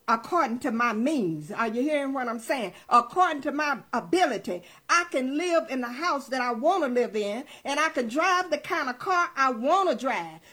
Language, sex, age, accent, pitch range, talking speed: English, female, 50-69, American, 270-365 Hz, 215 wpm